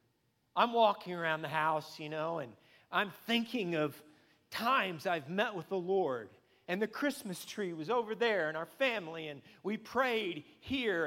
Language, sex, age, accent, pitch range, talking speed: English, male, 40-59, American, 165-245 Hz, 170 wpm